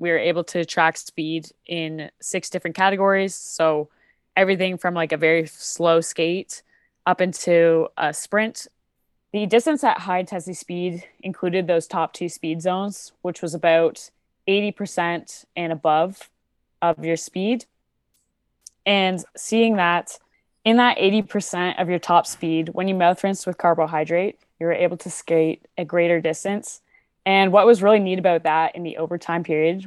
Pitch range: 165-190 Hz